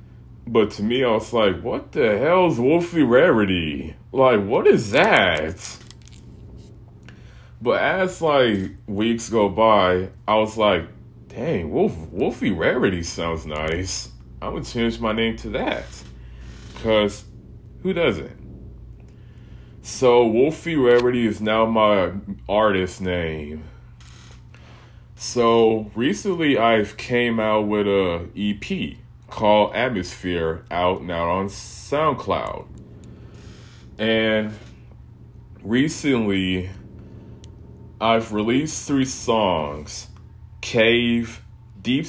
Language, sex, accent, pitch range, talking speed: English, male, American, 100-120 Hz, 100 wpm